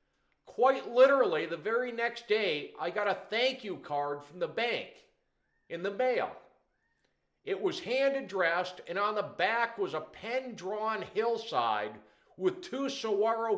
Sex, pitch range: male, 185-260 Hz